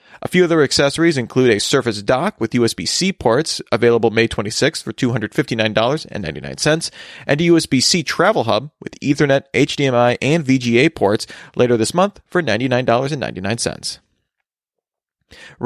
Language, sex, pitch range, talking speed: English, male, 115-150 Hz, 125 wpm